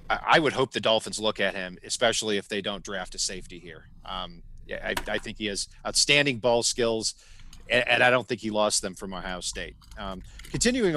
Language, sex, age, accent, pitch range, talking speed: English, male, 40-59, American, 105-130 Hz, 210 wpm